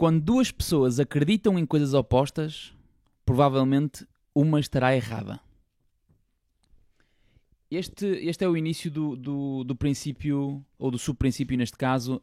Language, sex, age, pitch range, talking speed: Portuguese, male, 20-39, 120-150 Hz, 120 wpm